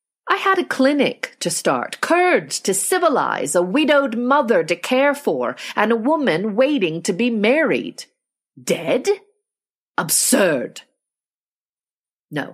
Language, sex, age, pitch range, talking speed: English, female, 40-59, 150-250 Hz, 120 wpm